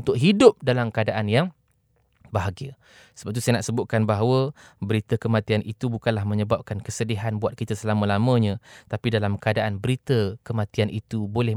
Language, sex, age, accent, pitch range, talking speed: English, male, 20-39, Indonesian, 100-115 Hz, 145 wpm